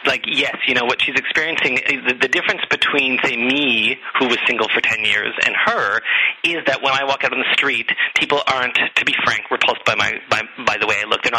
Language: English